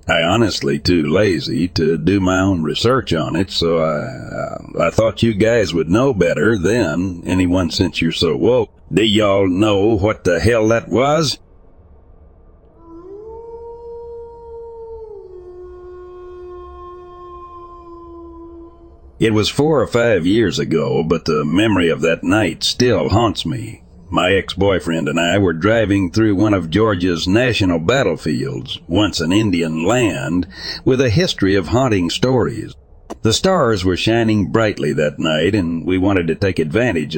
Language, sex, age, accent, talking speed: English, male, 60-79, American, 135 wpm